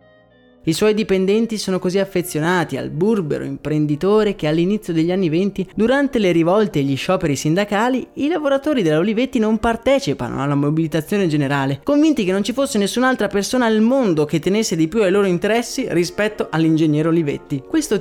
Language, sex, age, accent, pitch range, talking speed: Italian, male, 20-39, native, 155-215 Hz, 165 wpm